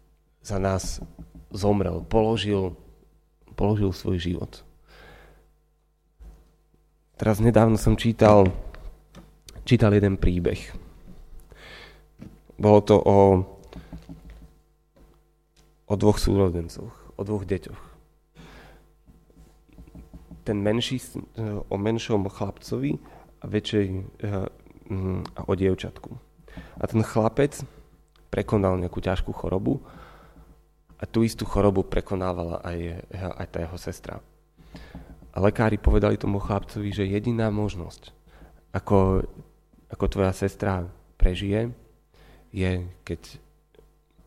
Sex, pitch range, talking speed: male, 90-110 Hz, 90 wpm